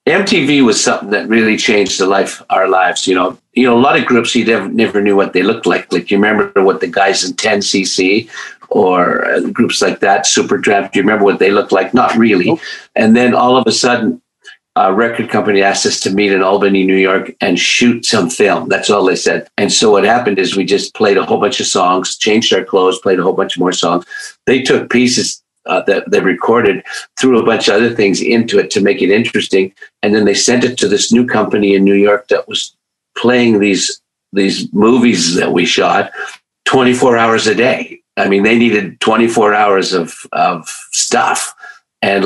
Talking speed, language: 210 wpm, English